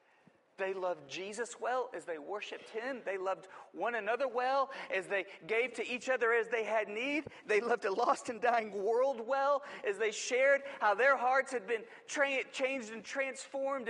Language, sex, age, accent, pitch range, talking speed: English, male, 40-59, American, 225-275 Hz, 180 wpm